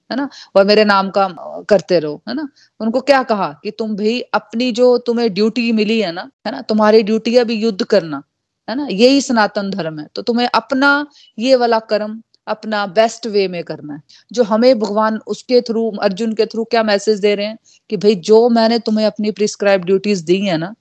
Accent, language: native, Hindi